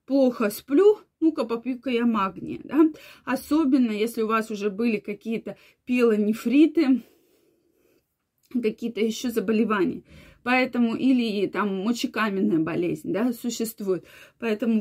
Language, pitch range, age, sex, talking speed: Russian, 225-300 Hz, 20-39, female, 105 wpm